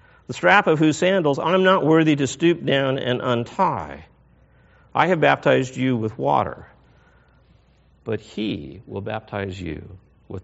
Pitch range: 110-145 Hz